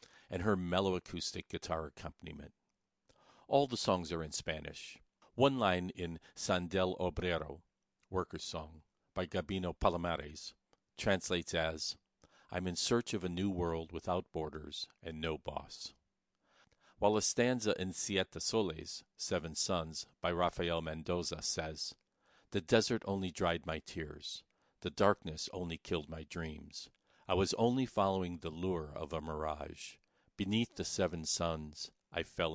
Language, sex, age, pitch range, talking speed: English, male, 50-69, 80-95 Hz, 135 wpm